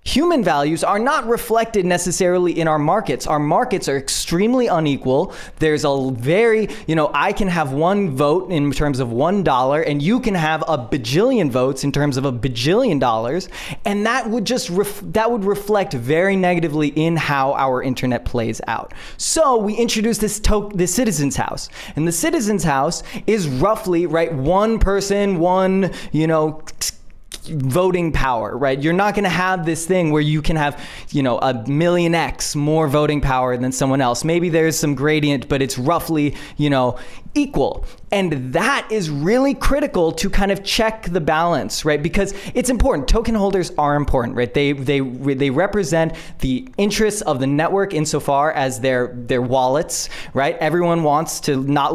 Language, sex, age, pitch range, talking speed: English, male, 20-39, 135-195 Hz, 175 wpm